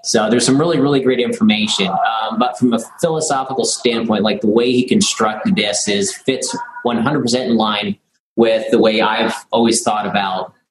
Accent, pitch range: American, 120-155 Hz